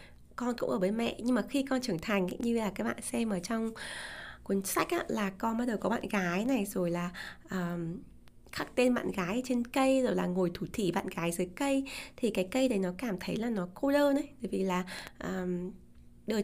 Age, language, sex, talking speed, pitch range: 20-39, Vietnamese, female, 215 wpm, 190-260 Hz